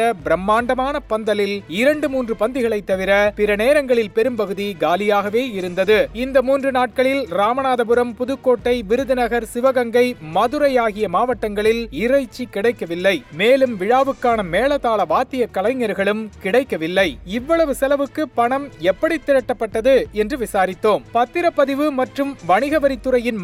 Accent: native